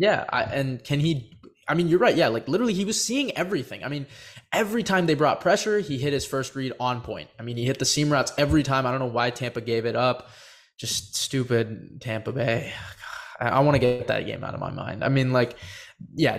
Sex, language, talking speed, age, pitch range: male, English, 240 wpm, 20-39, 115-145 Hz